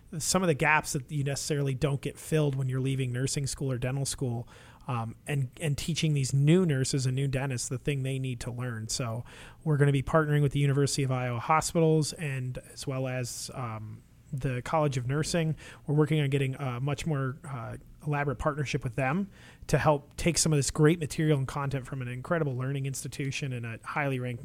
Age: 30-49